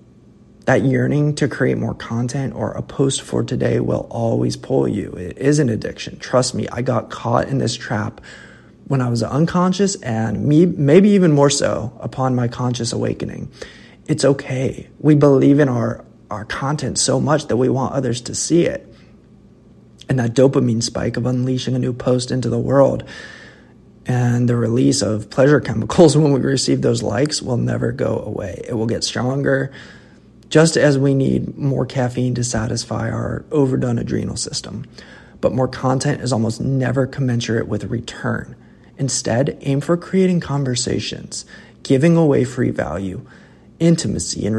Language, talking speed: English, 165 wpm